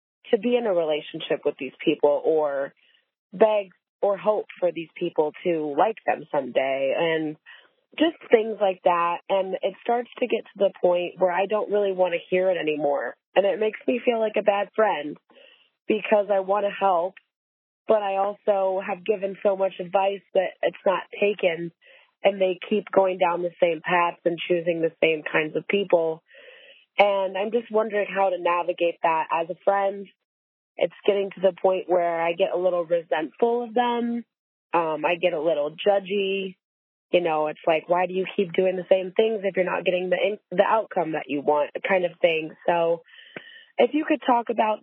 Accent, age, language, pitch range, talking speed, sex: American, 20-39, English, 170-205 Hz, 190 wpm, female